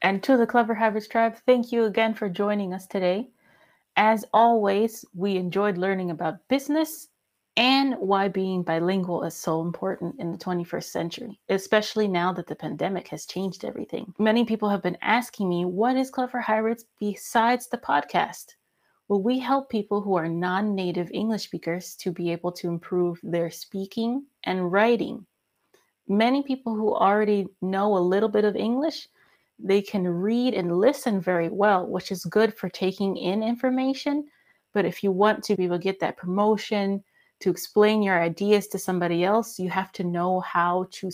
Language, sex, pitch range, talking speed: English, female, 180-230 Hz, 170 wpm